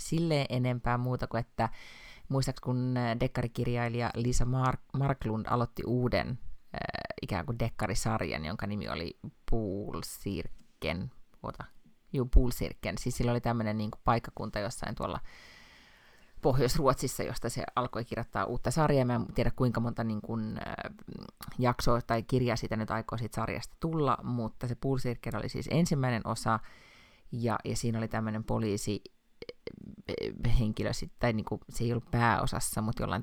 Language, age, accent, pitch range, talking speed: Finnish, 30-49, native, 110-125 Hz, 130 wpm